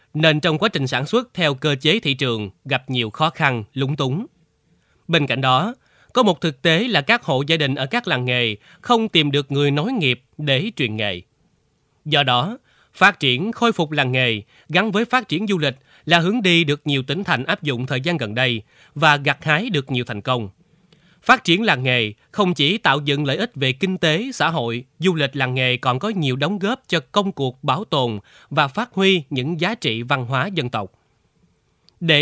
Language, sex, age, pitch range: Vietnamese, male, 20-39, 130-180 Hz